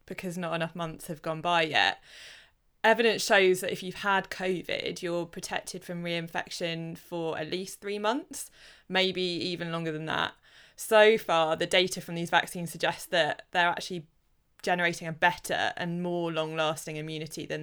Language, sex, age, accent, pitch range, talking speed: English, female, 20-39, British, 160-190 Hz, 165 wpm